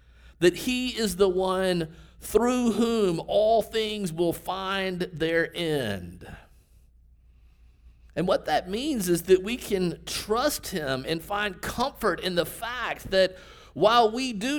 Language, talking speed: English, 135 wpm